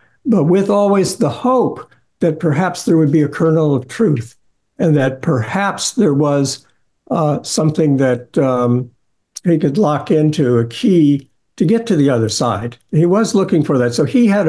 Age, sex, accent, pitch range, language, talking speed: 60-79, male, American, 130-170 Hz, English, 180 wpm